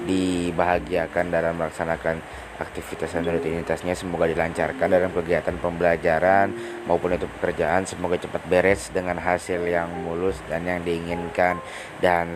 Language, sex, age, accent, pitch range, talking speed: Indonesian, male, 20-39, native, 85-95 Hz, 120 wpm